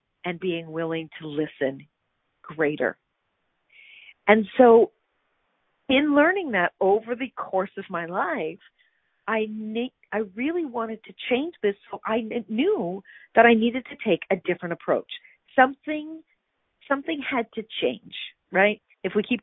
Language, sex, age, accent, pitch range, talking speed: English, female, 50-69, American, 195-265 Hz, 140 wpm